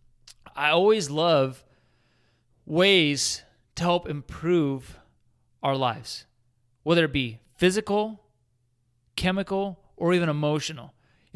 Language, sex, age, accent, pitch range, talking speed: English, male, 30-49, American, 145-195 Hz, 95 wpm